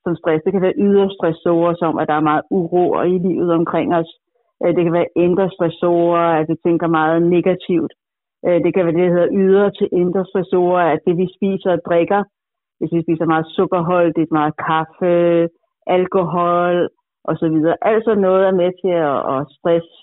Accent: native